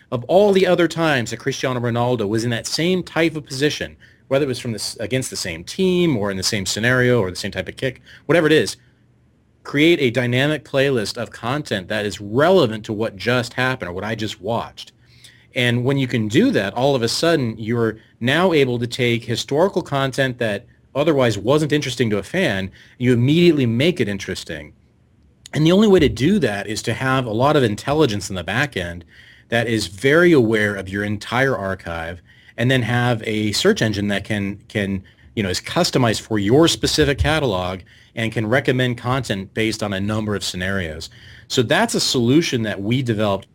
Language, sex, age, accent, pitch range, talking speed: English, male, 30-49, American, 100-130 Hz, 200 wpm